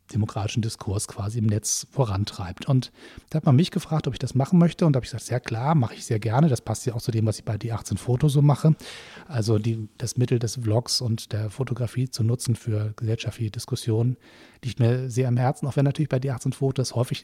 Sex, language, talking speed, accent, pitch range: male, German, 230 wpm, German, 115-135 Hz